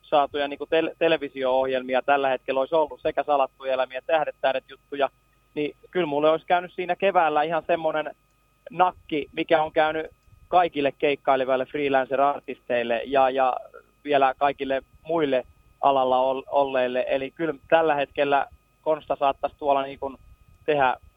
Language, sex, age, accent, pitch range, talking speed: Finnish, male, 30-49, native, 130-155 Hz, 135 wpm